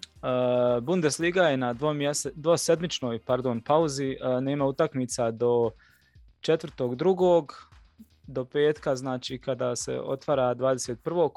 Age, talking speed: 20-39, 105 wpm